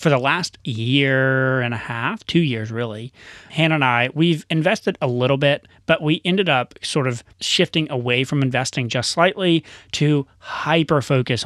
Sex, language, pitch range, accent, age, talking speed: male, English, 115-145 Hz, American, 30-49, 170 wpm